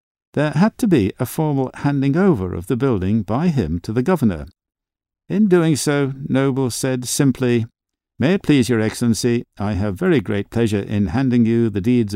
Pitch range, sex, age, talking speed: 100-135 Hz, male, 50-69, 185 wpm